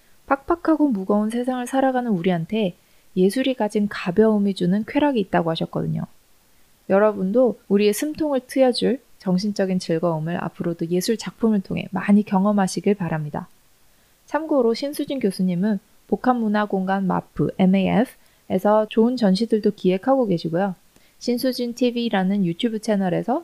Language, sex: Korean, female